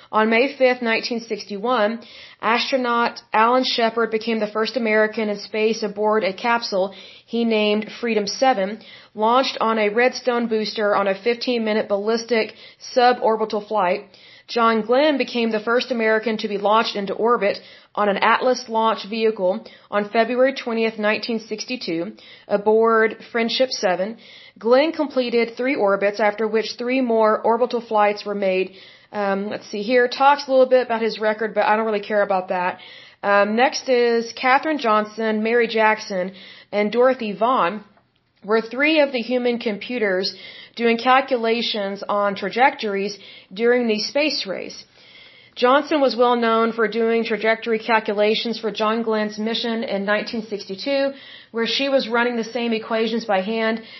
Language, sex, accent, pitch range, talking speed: English, female, American, 210-245 Hz, 145 wpm